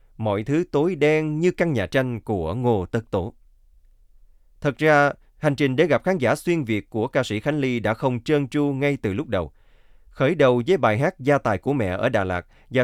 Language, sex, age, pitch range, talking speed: Vietnamese, male, 20-39, 105-145 Hz, 225 wpm